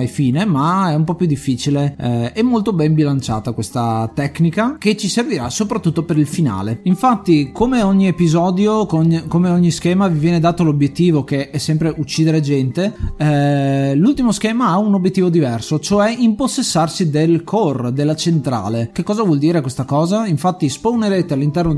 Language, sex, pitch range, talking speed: Italian, male, 140-190 Hz, 165 wpm